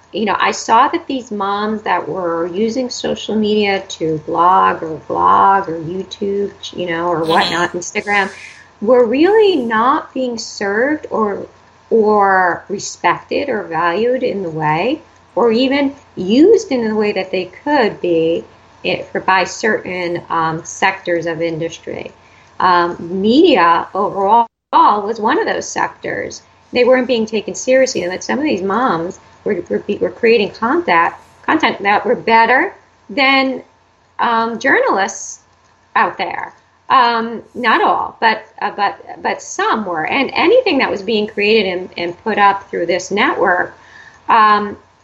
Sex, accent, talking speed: female, American, 145 wpm